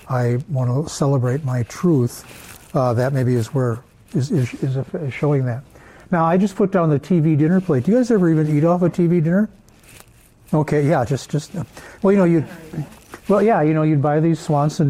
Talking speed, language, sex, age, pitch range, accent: 210 wpm, English, male, 60-79, 130-165 Hz, American